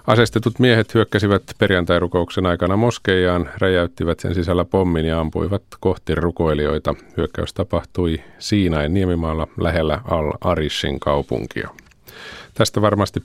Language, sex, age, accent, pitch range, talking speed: Finnish, male, 50-69, native, 85-105 Hz, 105 wpm